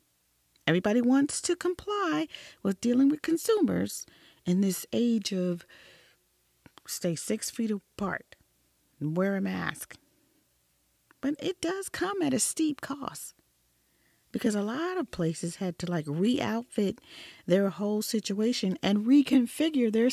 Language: English